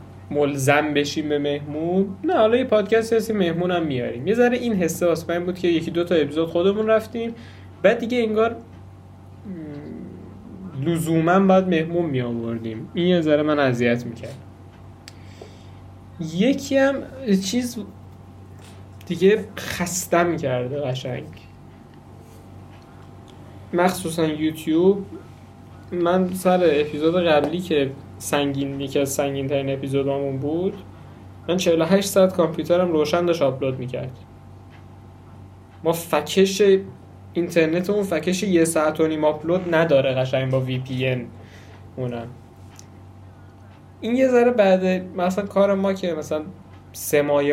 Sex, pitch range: male, 115-175 Hz